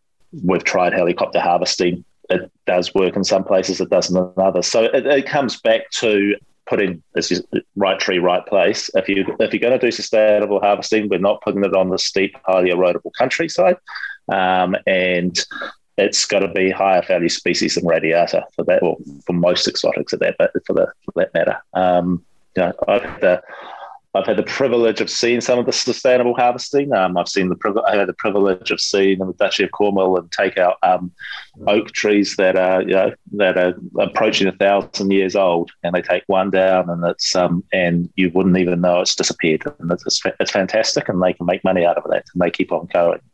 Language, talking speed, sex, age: English, 205 wpm, male, 30-49